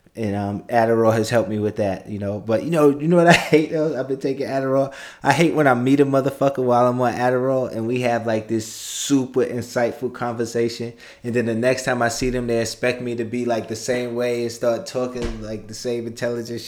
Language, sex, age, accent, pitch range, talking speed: English, male, 20-39, American, 110-130 Hz, 240 wpm